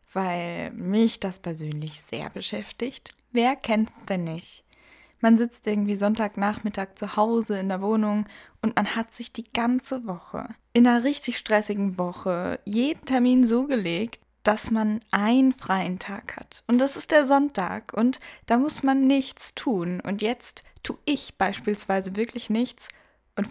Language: German